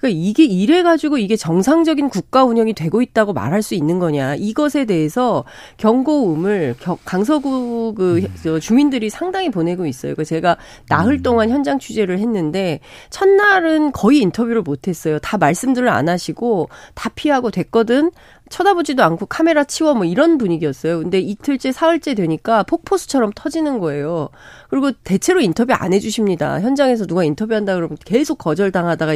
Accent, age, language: native, 40-59, Korean